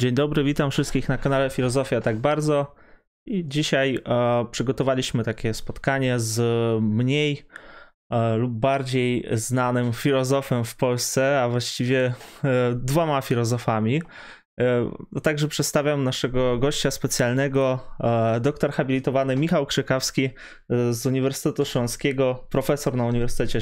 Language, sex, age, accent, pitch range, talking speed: Polish, male, 20-39, native, 120-145 Hz, 100 wpm